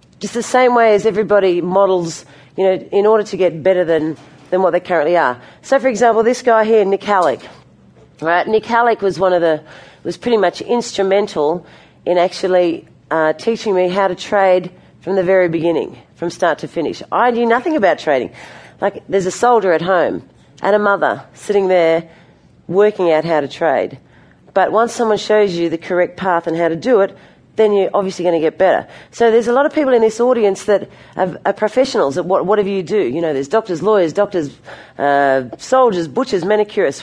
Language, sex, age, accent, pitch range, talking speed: English, female, 40-59, Australian, 170-220 Hz, 195 wpm